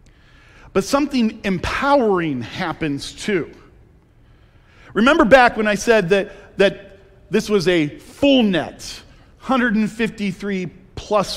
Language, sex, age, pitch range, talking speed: English, male, 40-59, 165-215 Hz, 100 wpm